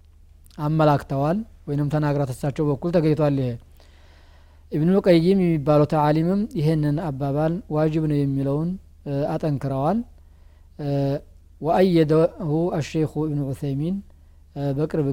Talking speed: 85 wpm